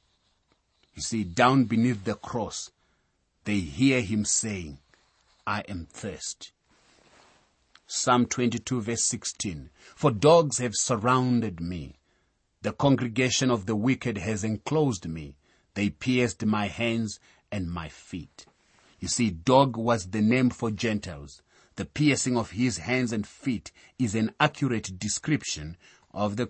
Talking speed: 130 wpm